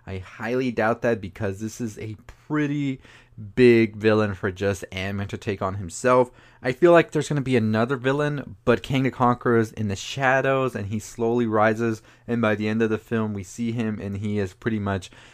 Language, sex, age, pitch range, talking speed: English, male, 20-39, 100-120 Hz, 205 wpm